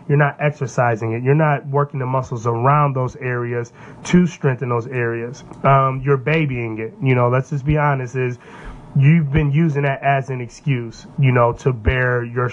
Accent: American